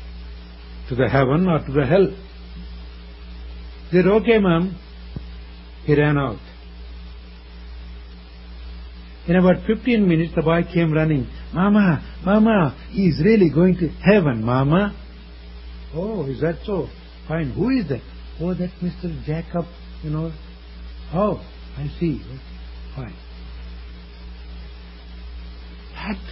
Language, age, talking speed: English, 60-79, 110 wpm